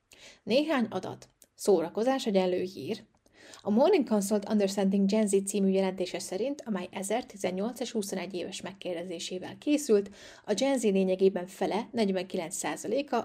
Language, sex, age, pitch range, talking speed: Hungarian, female, 30-49, 185-220 Hz, 120 wpm